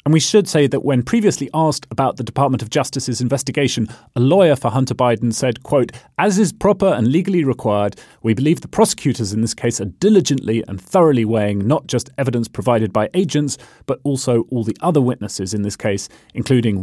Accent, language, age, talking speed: British, English, 30-49, 195 wpm